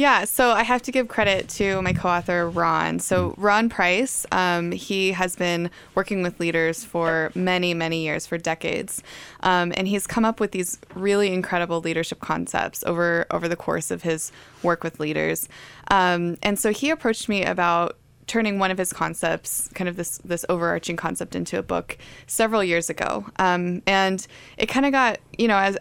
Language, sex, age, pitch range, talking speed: English, female, 20-39, 165-200 Hz, 185 wpm